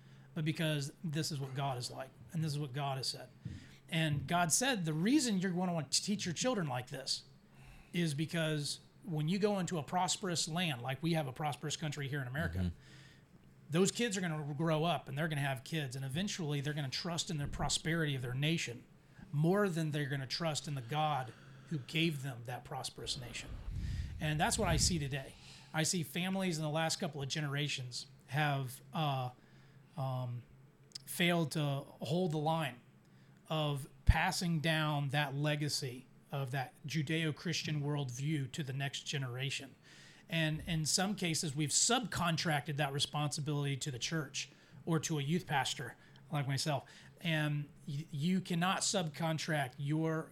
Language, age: English, 40-59